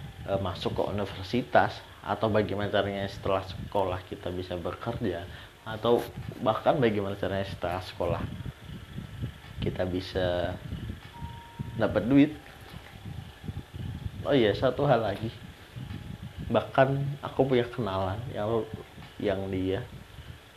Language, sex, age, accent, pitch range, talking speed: Indonesian, male, 30-49, native, 95-115 Hz, 95 wpm